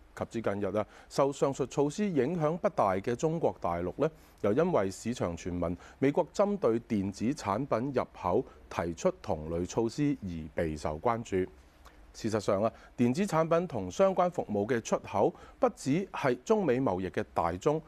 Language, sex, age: Chinese, male, 30-49